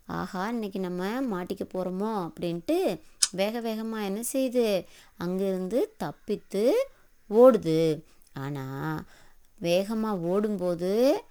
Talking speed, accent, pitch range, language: 85 wpm, native, 175-225 Hz, Tamil